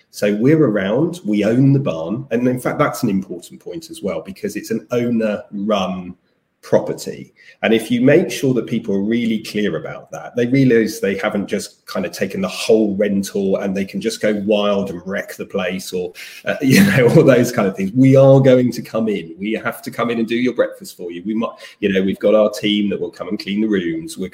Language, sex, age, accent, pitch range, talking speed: English, male, 30-49, British, 100-130 Hz, 235 wpm